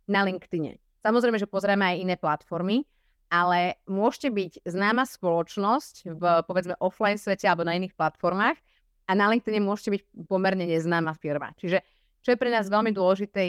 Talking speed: 160 wpm